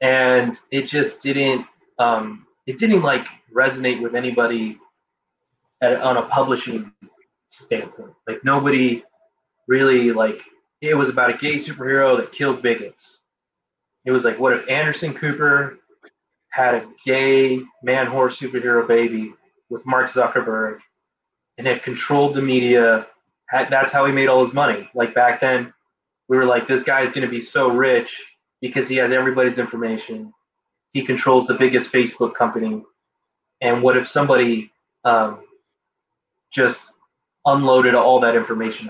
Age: 20-39